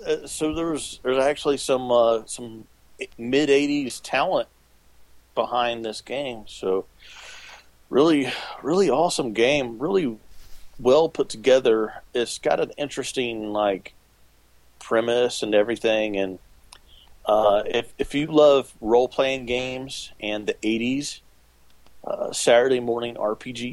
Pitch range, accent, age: 95-120 Hz, American, 40-59